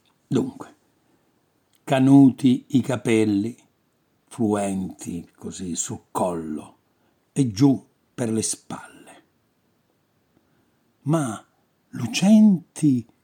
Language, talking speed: Italian, 70 wpm